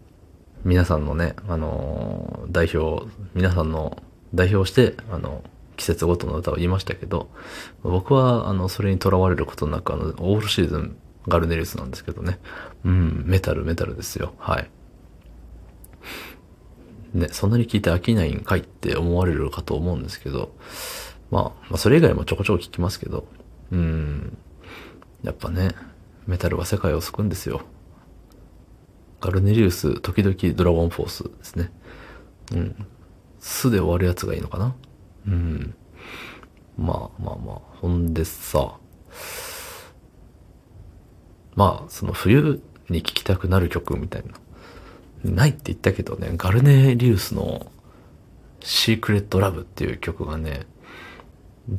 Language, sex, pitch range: Japanese, male, 85-105 Hz